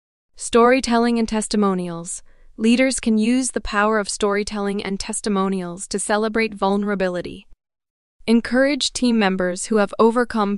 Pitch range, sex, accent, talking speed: 195-235 Hz, female, American, 120 wpm